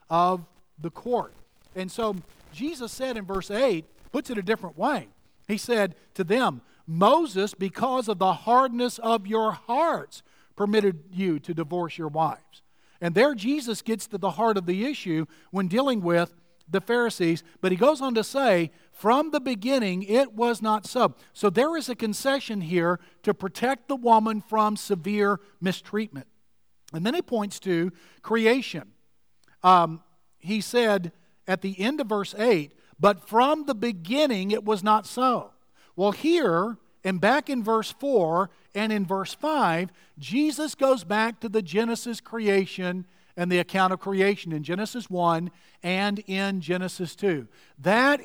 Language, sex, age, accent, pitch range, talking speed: English, male, 50-69, American, 180-235 Hz, 160 wpm